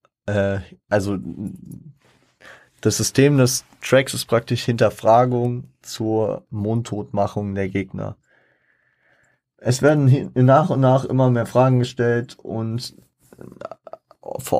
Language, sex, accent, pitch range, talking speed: German, male, German, 100-120 Hz, 95 wpm